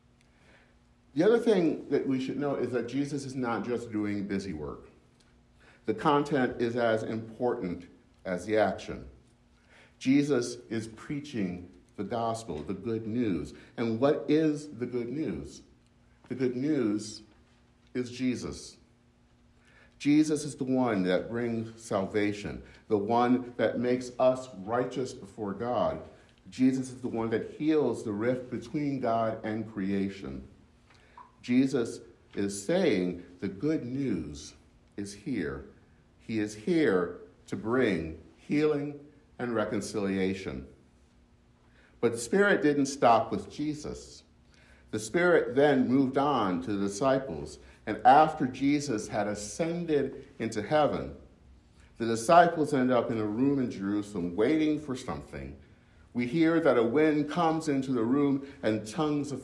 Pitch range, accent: 95-135 Hz, American